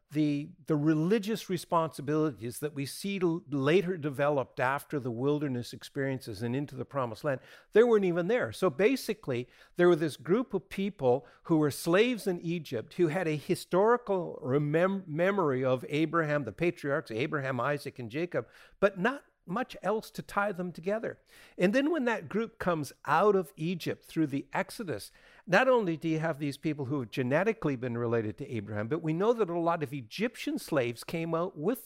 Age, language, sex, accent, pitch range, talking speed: 60-79, English, male, American, 145-195 Hz, 180 wpm